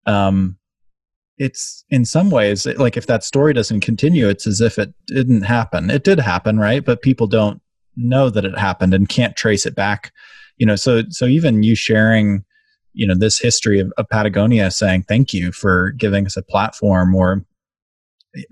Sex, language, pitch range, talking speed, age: male, English, 100-120 Hz, 185 wpm, 20-39